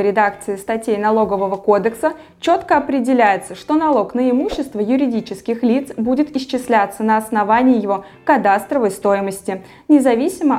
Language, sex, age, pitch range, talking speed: Russian, female, 20-39, 210-285 Hz, 115 wpm